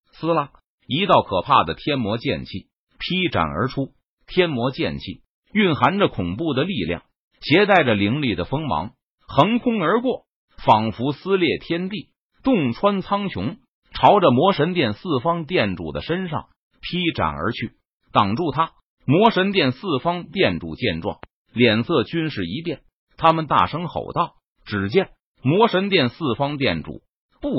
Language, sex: Chinese, male